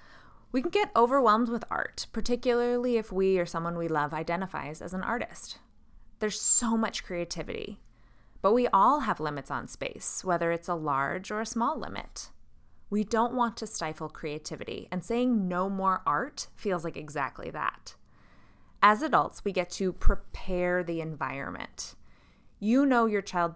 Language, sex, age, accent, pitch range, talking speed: English, female, 20-39, American, 165-235 Hz, 160 wpm